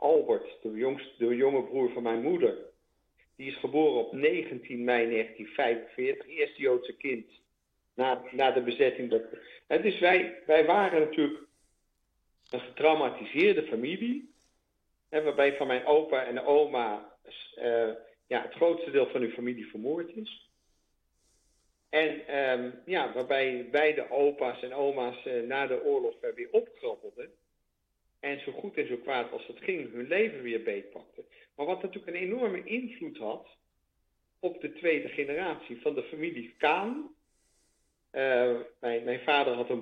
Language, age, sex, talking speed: Dutch, 50-69, male, 150 wpm